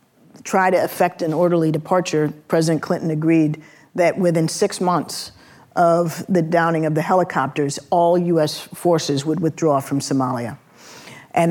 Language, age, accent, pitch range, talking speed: English, 50-69, American, 145-175 Hz, 140 wpm